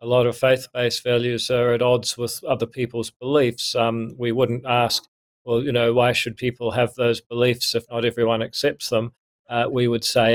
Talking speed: 195 wpm